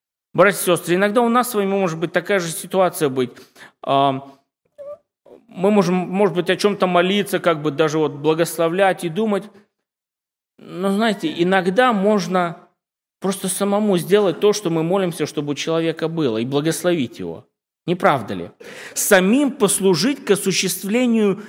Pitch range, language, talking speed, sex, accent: 140-195 Hz, Russian, 150 wpm, male, native